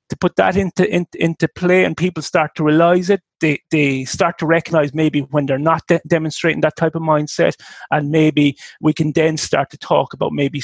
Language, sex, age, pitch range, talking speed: English, male, 30-49, 145-170 Hz, 215 wpm